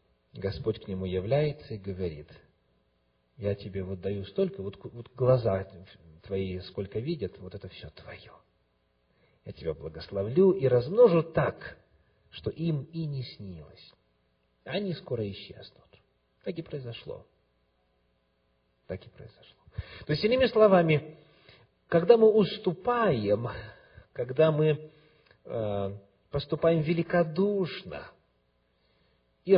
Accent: native